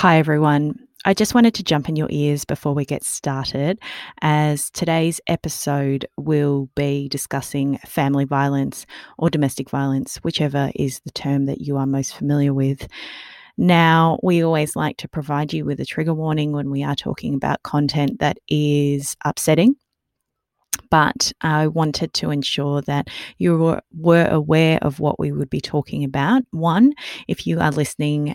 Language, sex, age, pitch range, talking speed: English, female, 20-39, 140-165 Hz, 160 wpm